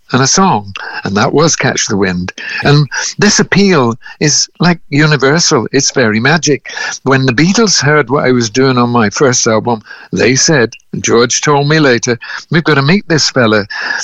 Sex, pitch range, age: male, 120-160 Hz, 60-79